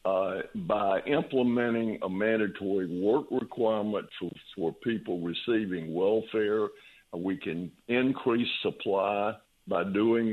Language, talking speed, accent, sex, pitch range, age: English, 105 wpm, American, male, 95-115 Hz, 60-79